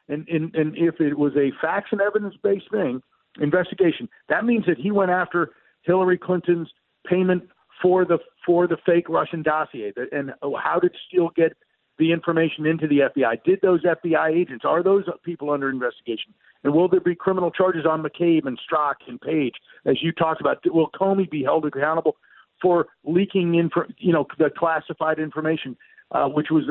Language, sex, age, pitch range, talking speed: English, male, 50-69, 150-180 Hz, 175 wpm